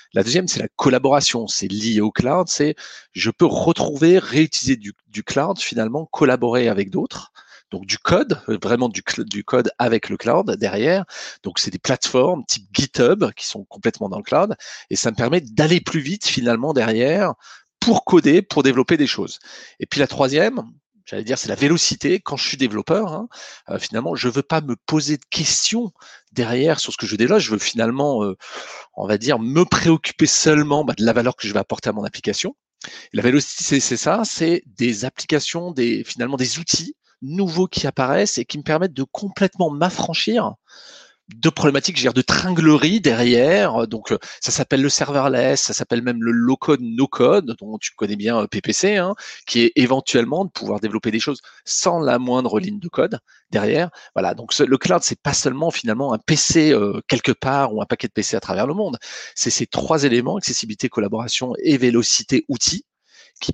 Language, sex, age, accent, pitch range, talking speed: French, male, 40-59, French, 120-160 Hz, 195 wpm